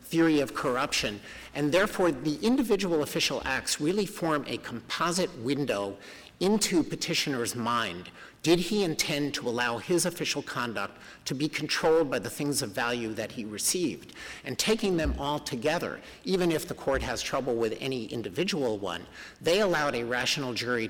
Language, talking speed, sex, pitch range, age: English, 160 wpm, male, 120-165 Hz, 50-69